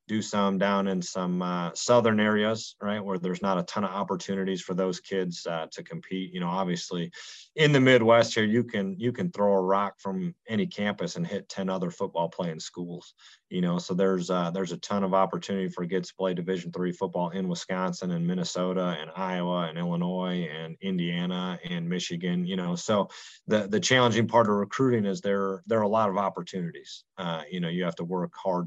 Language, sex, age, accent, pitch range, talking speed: English, male, 30-49, American, 90-105 Hz, 210 wpm